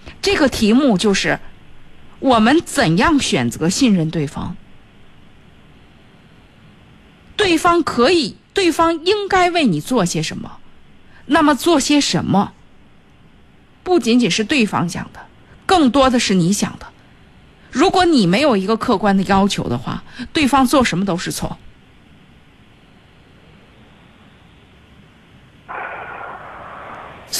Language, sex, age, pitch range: Chinese, female, 50-69, 195-275 Hz